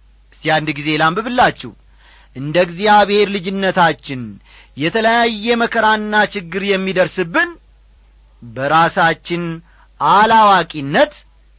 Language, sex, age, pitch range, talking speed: Amharic, male, 40-59, 160-250 Hz, 60 wpm